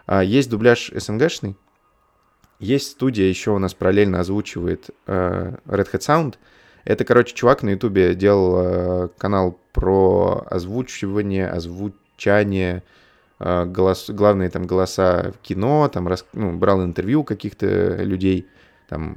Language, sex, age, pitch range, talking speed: Russian, male, 20-39, 95-110 Hz, 110 wpm